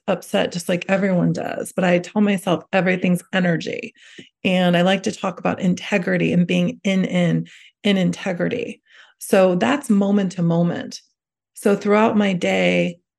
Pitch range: 180-220 Hz